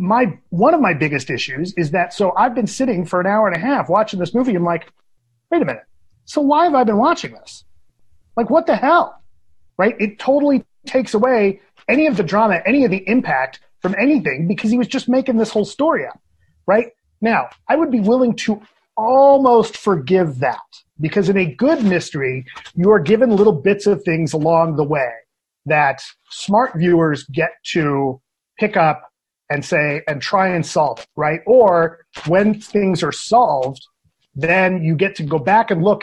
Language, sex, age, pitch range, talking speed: English, male, 40-59, 160-230 Hz, 190 wpm